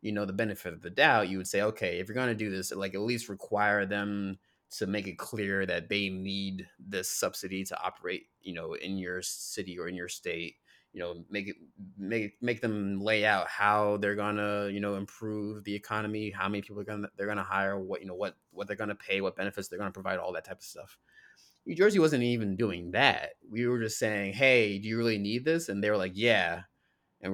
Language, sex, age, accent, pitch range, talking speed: English, male, 20-39, American, 100-125 Hz, 235 wpm